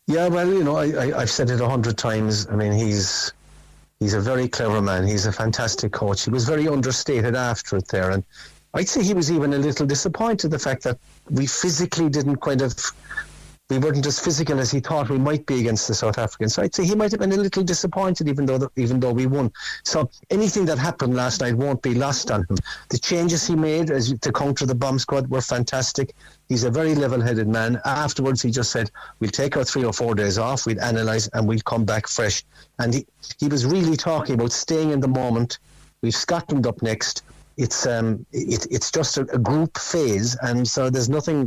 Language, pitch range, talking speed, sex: English, 115-145 Hz, 225 wpm, male